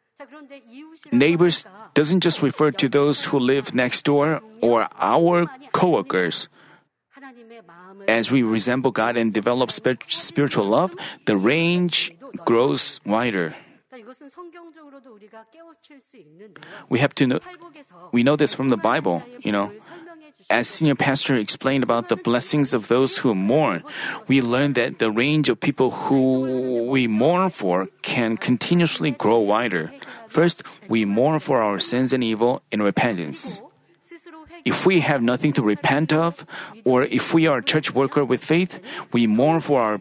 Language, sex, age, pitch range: Korean, male, 40-59, 125-210 Hz